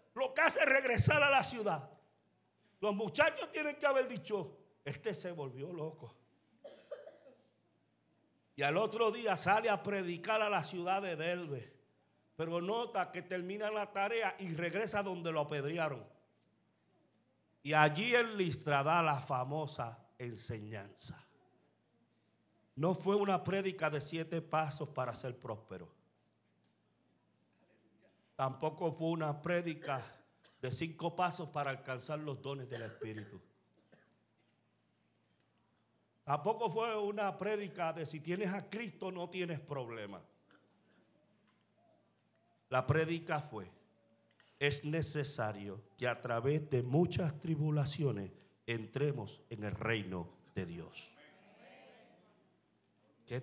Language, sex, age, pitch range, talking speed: Spanish, male, 50-69, 130-195 Hz, 115 wpm